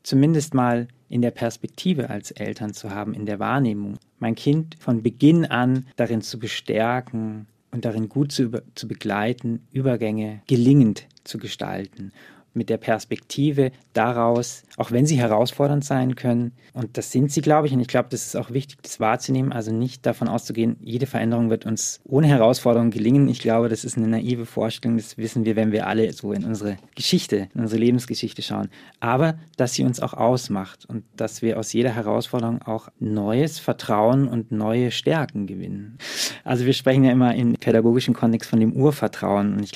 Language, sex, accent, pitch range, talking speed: German, male, German, 105-125 Hz, 180 wpm